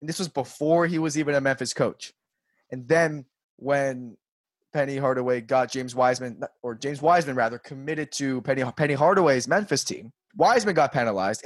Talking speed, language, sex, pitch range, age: 170 wpm, English, male, 130-160 Hz, 20-39